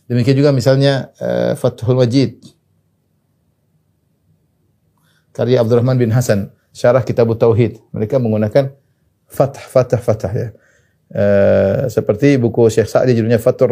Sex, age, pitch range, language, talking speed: male, 30-49, 115-140 Hz, Indonesian, 120 wpm